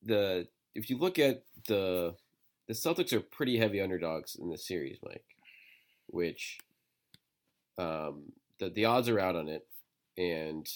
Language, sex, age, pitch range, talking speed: English, male, 30-49, 90-110 Hz, 145 wpm